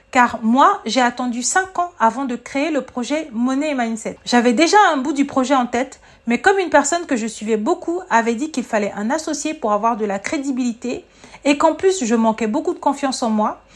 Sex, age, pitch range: female, 40-59, 240-310 Hz